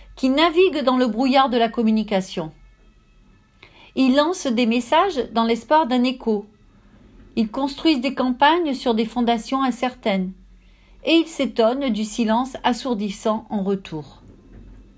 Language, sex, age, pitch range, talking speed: French, female, 40-59, 215-275 Hz, 130 wpm